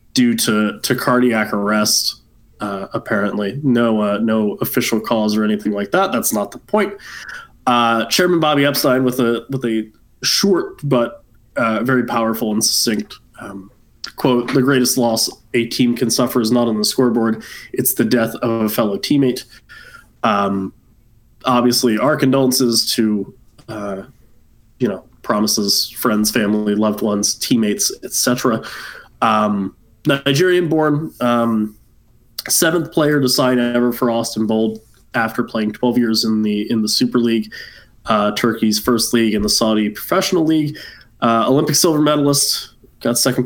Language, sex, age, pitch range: English, male, 20-39, 110-130 Hz